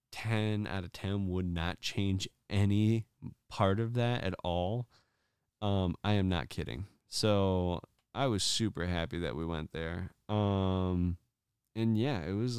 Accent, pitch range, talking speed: American, 90-105 Hz, 155 wpm